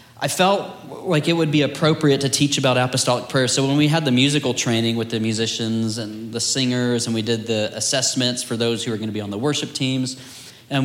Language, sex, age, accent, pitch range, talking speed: English, male, 30-49, American, 115-135 Hz, 225 wpm